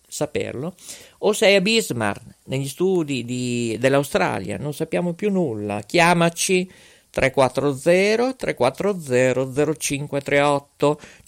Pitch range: 120-170 Hz